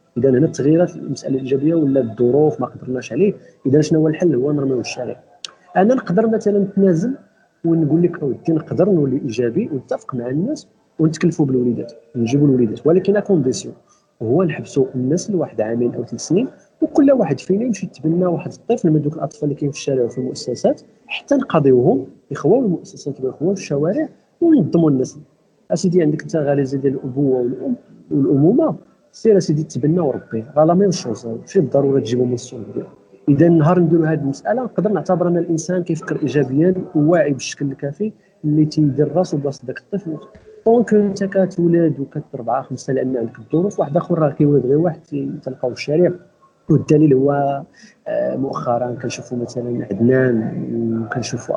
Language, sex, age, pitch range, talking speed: Arabic, male, 40-59, 130-180 Hz, 150 wpm